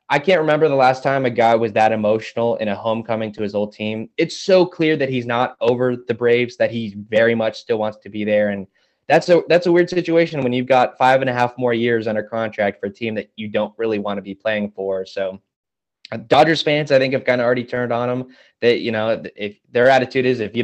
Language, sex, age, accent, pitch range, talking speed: English, male, 20-39, American, 105-135 Hz, 255 wpm